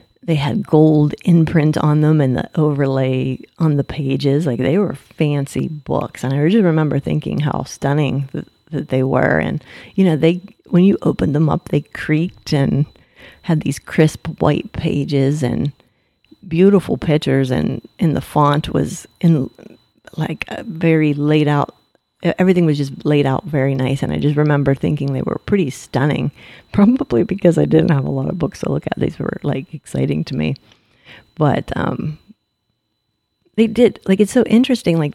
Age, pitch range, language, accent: 30-49, 135-165 Hz, English, American